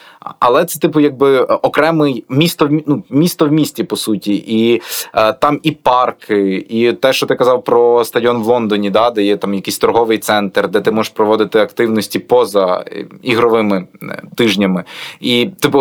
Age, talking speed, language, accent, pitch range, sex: 20-39, 160 wpm, Ukrainian, native, 110-140 Hz, male